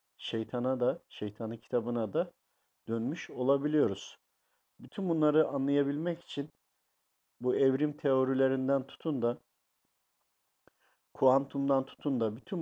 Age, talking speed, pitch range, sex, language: 50-69, 95 wpm, 125-150 Hz, male, Turkish